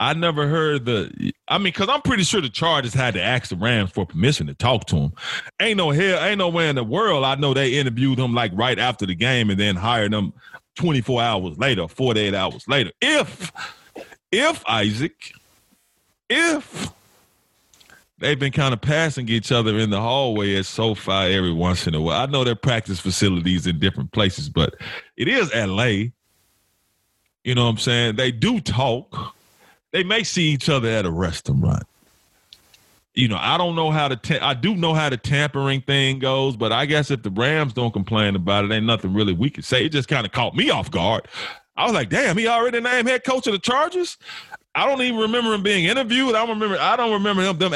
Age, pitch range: 30-49, 105-170 Hz